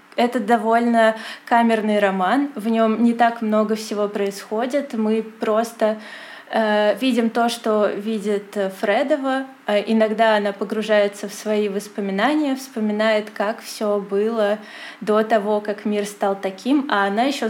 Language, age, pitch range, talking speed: Russian, 20-39, 205-230 Hz, 130 wpm